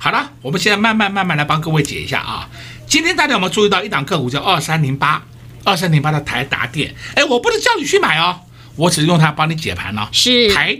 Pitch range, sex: 120-175 Hz, male